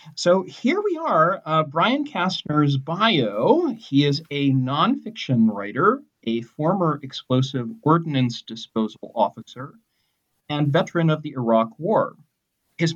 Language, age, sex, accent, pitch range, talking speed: English, 40-59, male, American, 130-175 Hz, 120 wpm